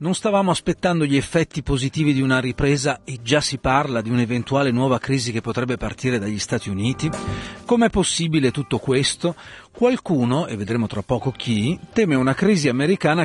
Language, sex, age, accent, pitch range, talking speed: Italian, male, 40-59, native, 115-145 Hz, 170 wpm